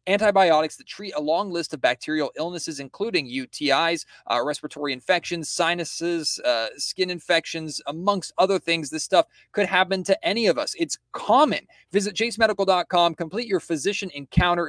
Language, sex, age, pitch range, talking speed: English, male, 30-49, 155-200 Hz, 150 wpm